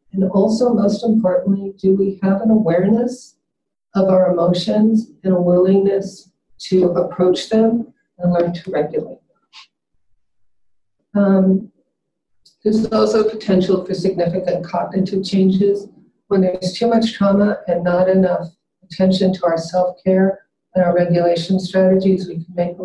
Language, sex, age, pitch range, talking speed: English, female, 50-69, 180-205 Hz, 135 wpm